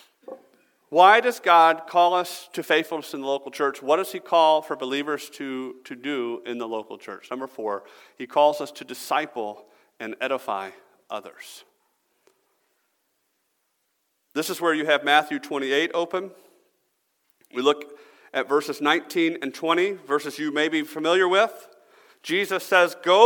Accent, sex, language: American, male, English